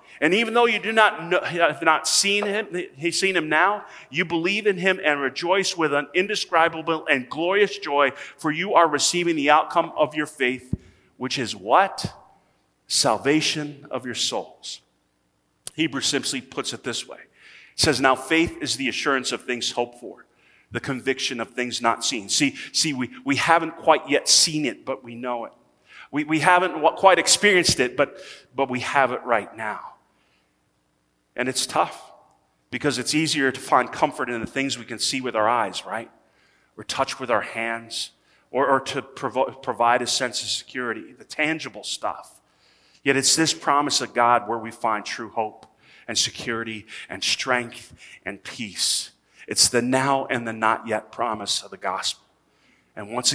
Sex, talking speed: male, 180 wpm